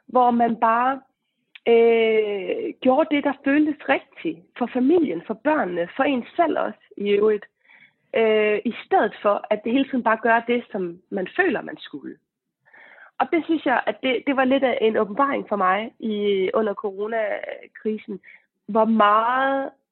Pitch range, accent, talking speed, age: 205-270 Hz, native, 155 wpm, 30-49